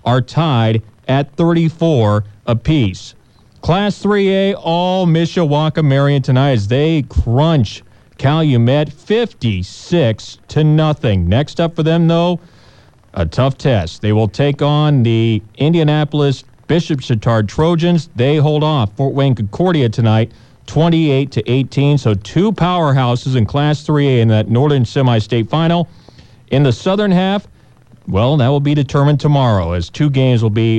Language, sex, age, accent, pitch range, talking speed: English, male, 40-59, American, 120-160 Hz, 140 wpm